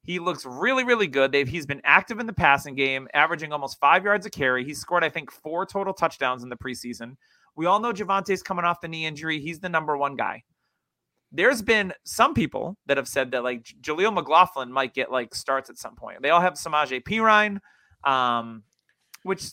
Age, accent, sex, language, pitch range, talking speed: 30-49, American, male, English, 140-195 Hz, 205 wpm